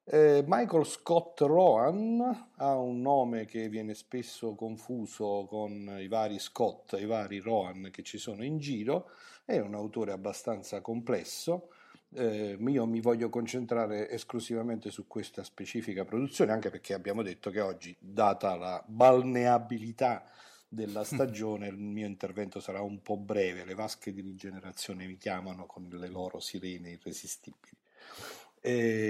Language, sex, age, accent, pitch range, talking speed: Italian, male, 50-69, native, 100-120 Hz, 140 wpm